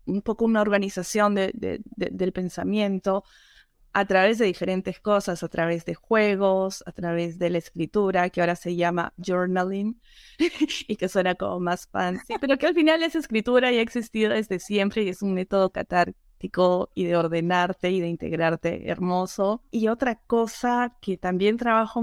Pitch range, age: 185-235 Hz, 20-39